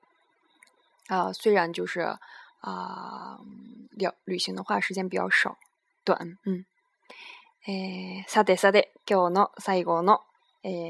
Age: 20-39